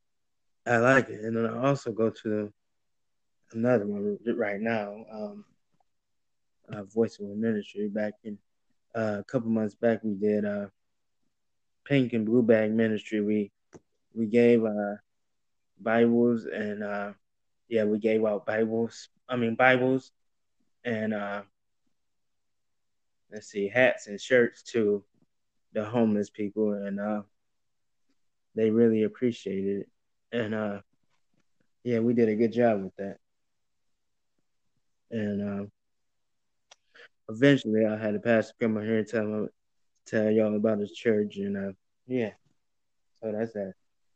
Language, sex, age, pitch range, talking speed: Amharic, male, 20-39, 100-115 Hz, 135 wpm